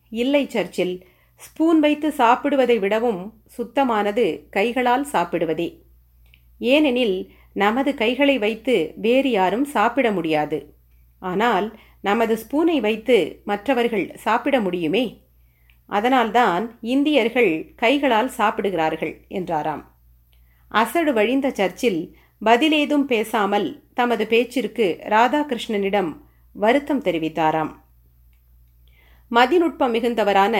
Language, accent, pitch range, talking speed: Tamil, native, 180-255 Hz, 80 wpm